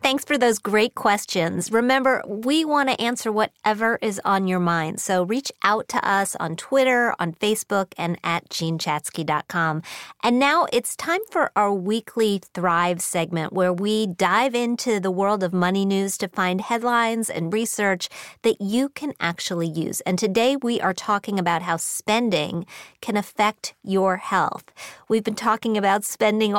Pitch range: 175-235 Hz